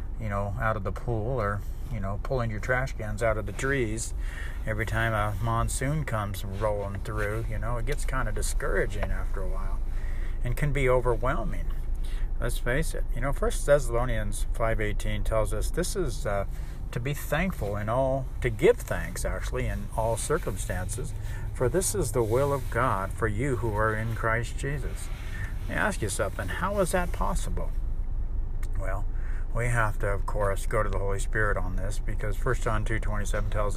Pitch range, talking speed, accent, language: 95-115 Hz, 190 wpm, American, English